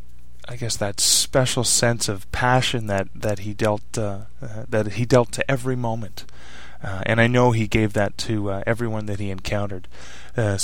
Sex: male